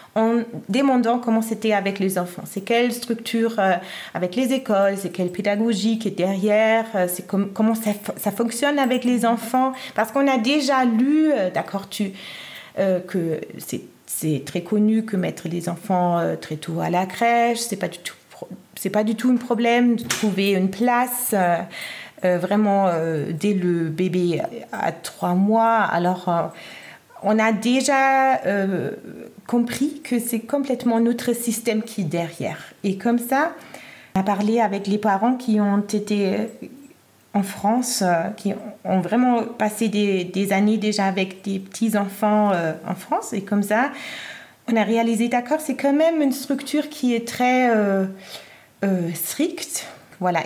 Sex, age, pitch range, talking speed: female, 30-49, 195-240 Hz, 170 wpm